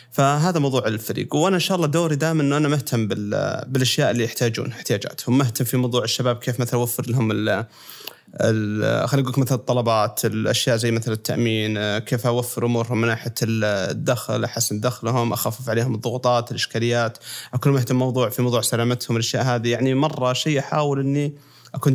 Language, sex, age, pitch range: Arabic, male, 30-49, 120-145 Hz